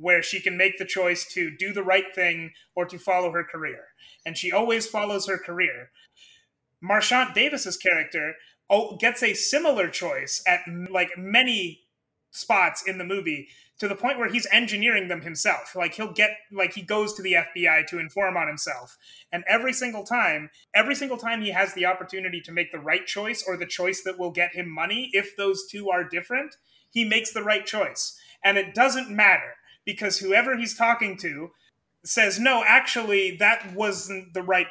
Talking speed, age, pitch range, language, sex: 185 wpm, 30-49, 175-215 Hz, English, male